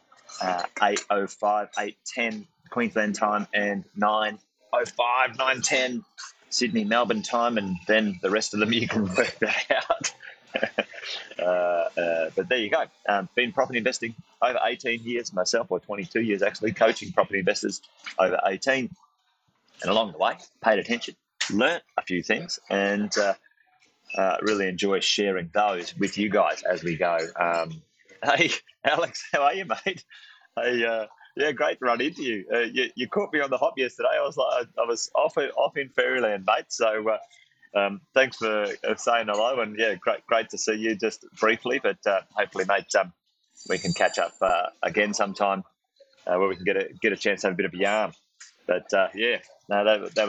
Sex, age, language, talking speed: male, 30-49, English, 180 wpm